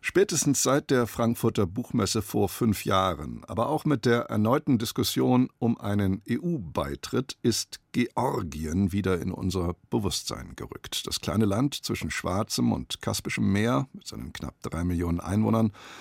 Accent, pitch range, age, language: German, 95-125 Hz, 50-69, German